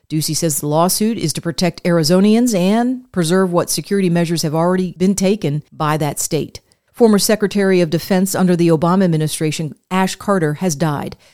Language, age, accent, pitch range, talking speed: English, 40-59, American, 165-205 Hz, 170 wpm